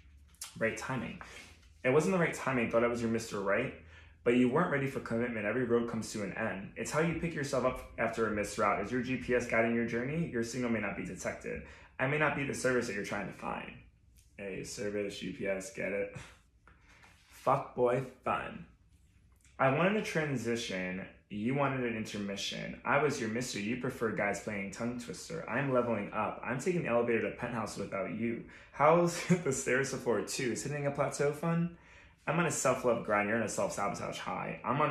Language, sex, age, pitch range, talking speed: English, male, 20-39, 100-135 Hz, 200 wpm